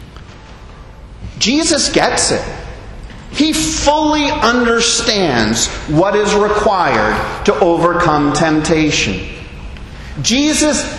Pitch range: 175-275 Hz